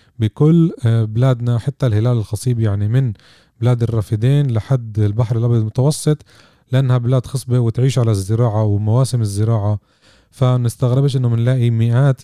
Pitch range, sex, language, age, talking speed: 110-135 Hz, male, Arabic, 30-49, 125 wpm